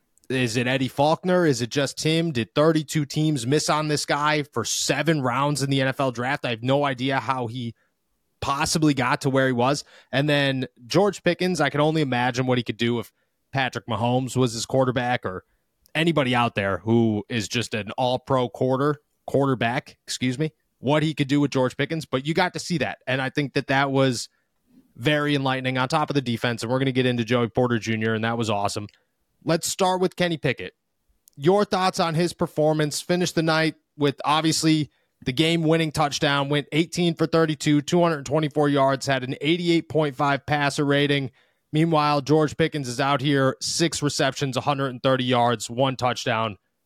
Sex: male